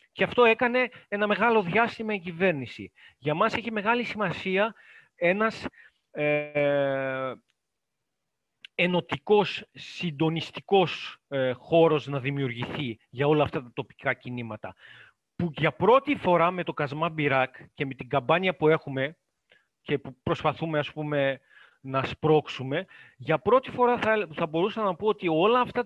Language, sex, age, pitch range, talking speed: Greek, male, 40-59, 145-220 Hz, 135 wpm